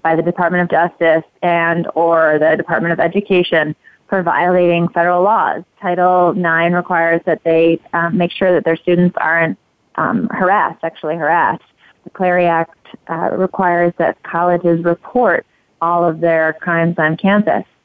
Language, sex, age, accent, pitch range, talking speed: English, female, 20-39, American, 165-180 Hz, 150 wpm